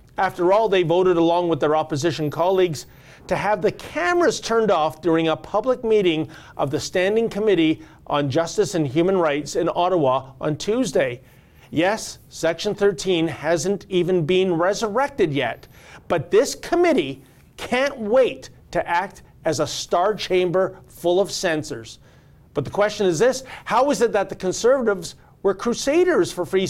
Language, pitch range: English, 150-205 Hz